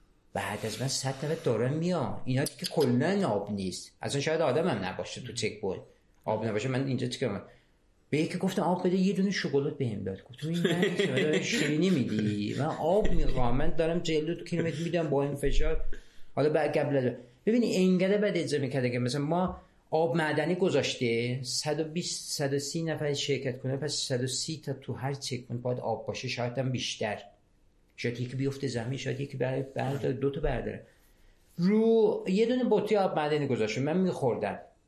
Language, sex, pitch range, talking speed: Persian, male, 125-170 Hz, 180 wpm